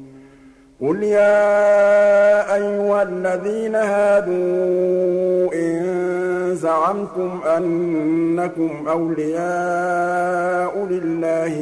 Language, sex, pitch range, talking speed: Arabic, male, 150-180 Hz, 50 wpm